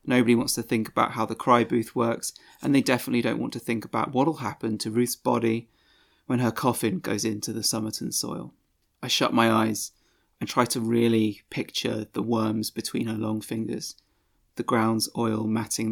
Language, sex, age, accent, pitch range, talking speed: English, male, 30-49, British, 110-120 Hz, 190 wpm